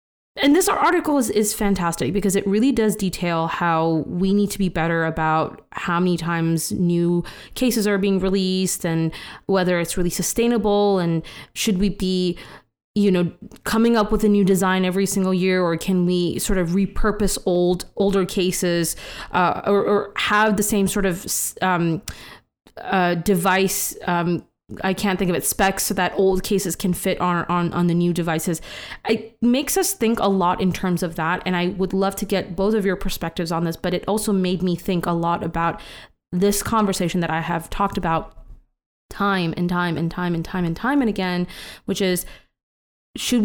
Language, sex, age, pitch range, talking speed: English, female, 20-39, 170-200 Hz, 190 wpm